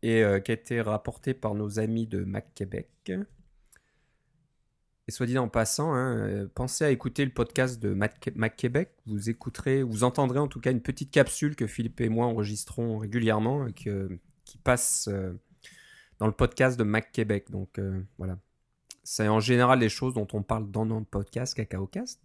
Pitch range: 105-125 Hz